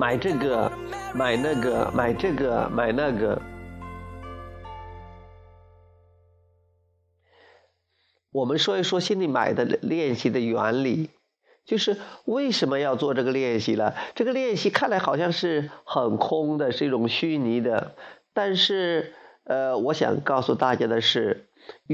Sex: male